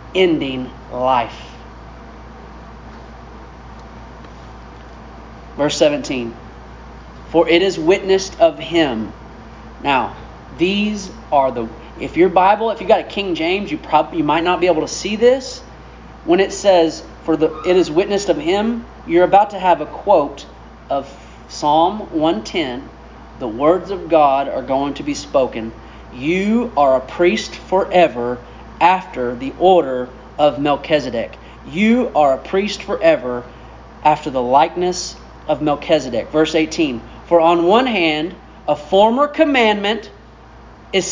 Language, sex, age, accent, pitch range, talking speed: English, male, 40-59, American, 140-215 Hz, 135 wpm